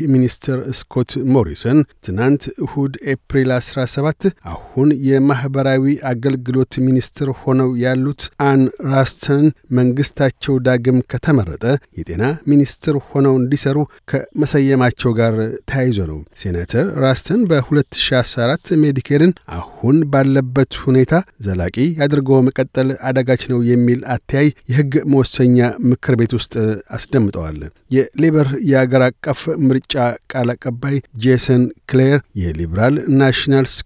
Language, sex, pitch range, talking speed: Amharic, male, 120-140 Hz, 95 wpm